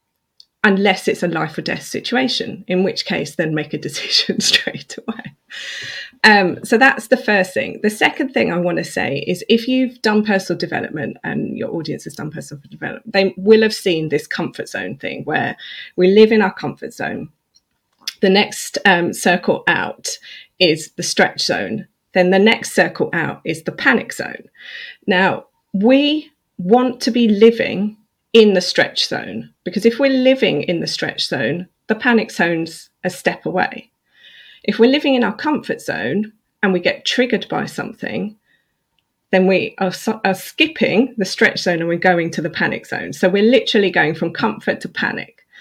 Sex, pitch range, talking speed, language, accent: female, 180-230 Hz, 180 wpm, English, British